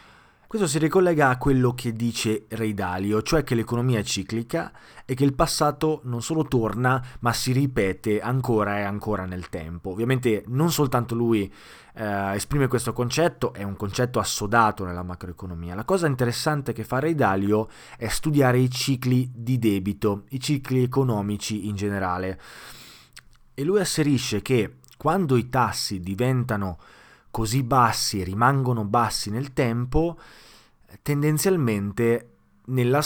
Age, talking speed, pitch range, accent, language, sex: 20-39, 140 wpm, 100-130 Hz, native, Italian, male